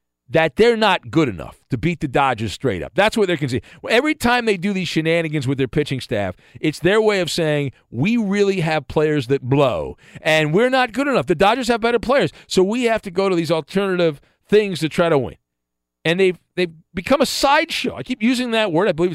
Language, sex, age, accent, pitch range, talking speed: English, male, 50-69, American, 145-215 Hz, 225 wpm